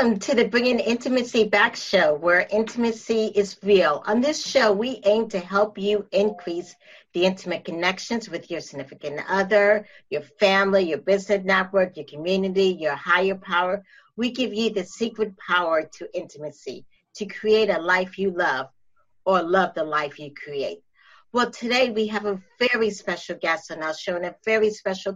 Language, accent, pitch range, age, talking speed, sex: English, American, 180-215 Hz, 50-69, 170 wpm, female